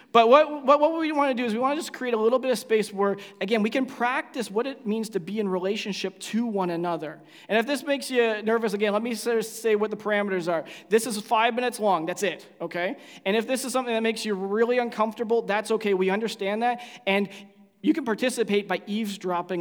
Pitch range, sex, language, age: 180-225 Hz, male, English, 20-39